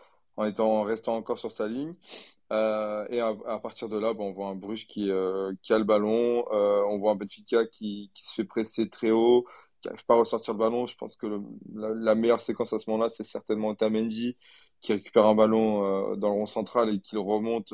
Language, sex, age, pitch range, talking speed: French, male, 20-39, 105-115 Hz, 245 wpm